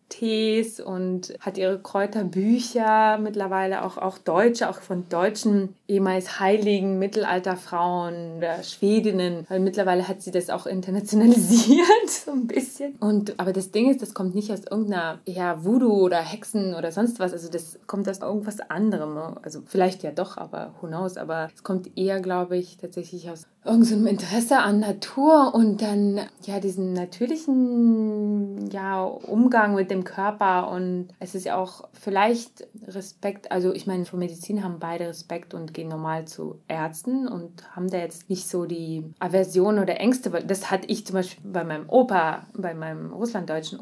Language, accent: German, German